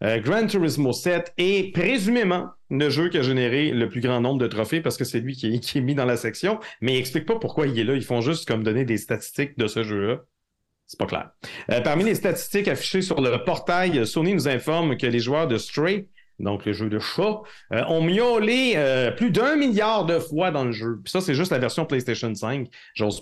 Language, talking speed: French, 240 wpm